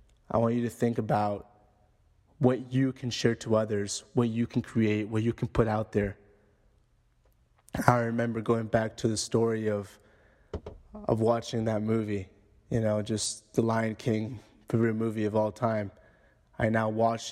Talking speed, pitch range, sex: 165 wpm, 105-115 Hz, male